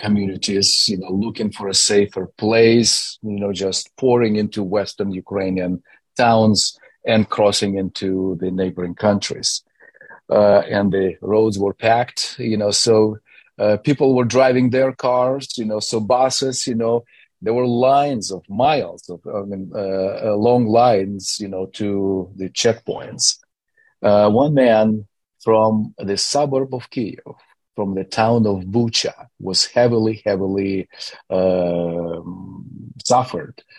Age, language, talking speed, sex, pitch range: 40-59, English, 135 wpm, male, 95-120 Hz